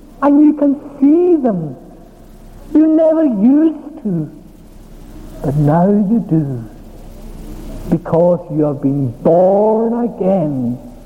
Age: 60-79